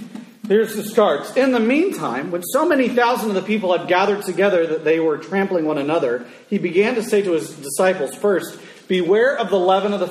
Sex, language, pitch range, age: male, English, 155-205 Hz, 40-59